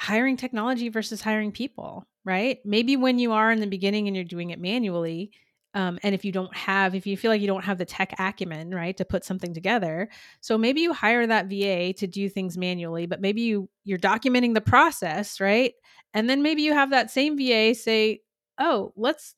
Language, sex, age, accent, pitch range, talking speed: English, female, 30-49, American, 185-230 Hz, 215 wpm